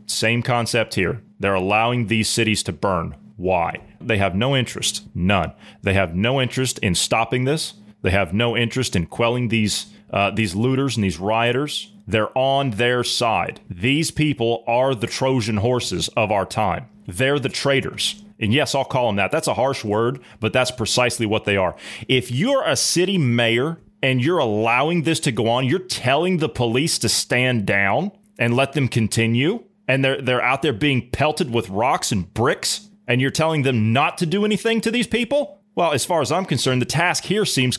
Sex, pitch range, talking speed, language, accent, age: male, 110-150 Hz, 195 wpm, English, American, 30-49